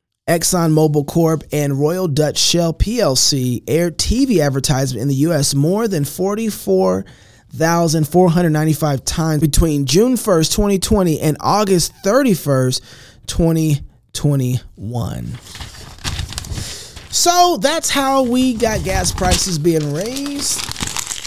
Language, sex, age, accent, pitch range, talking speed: English, male, 20-39, American, 140-220 Hz, 100 wpm